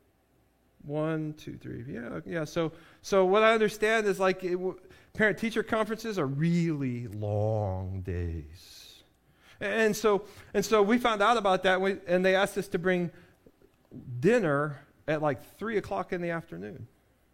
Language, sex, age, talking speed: English, male, 40-59, 155 wpm